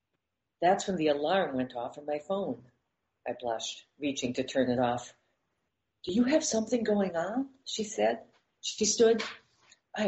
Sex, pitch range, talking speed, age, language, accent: female, 125-190 Hz, 160 wpm, 50-69, English, American